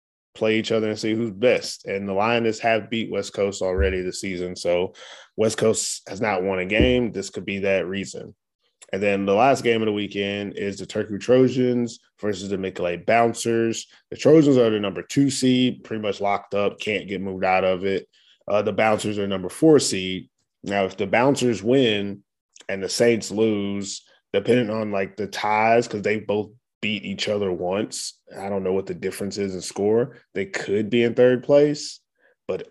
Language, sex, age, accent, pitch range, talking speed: English, male, 20-39, American, 100-120 Hz, 195 wpm